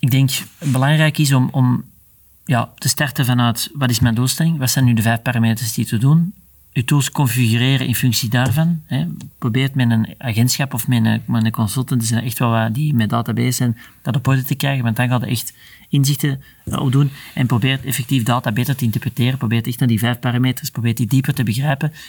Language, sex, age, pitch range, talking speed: Dutch, male, 40-59, 120-145 Hz, 210 wpm